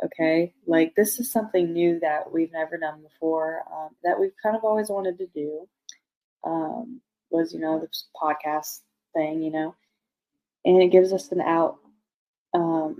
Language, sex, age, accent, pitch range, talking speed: English, female, 20-39, American, 160-220 Hz, 165 wpm